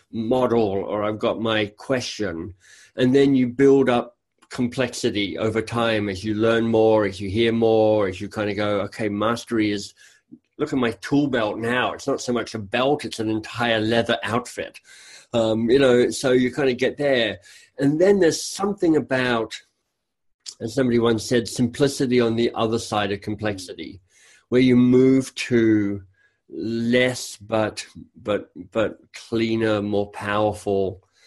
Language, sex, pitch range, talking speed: English, male, 105-125 Hz, 160 wpm